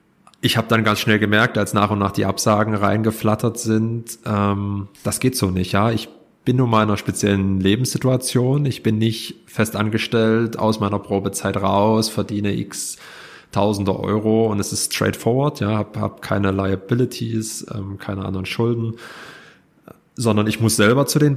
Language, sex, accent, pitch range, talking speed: German, male, German, 100-115 Hz, 170 wpm